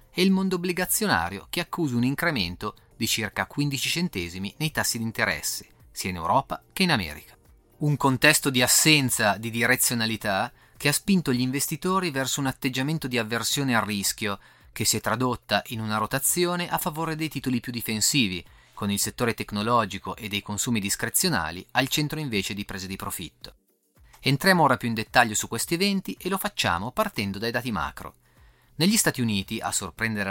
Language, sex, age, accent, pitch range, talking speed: Italian, male, 30-49, native, 105-145 Hz, 175 wpm